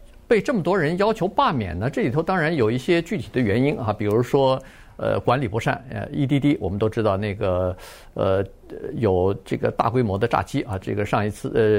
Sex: male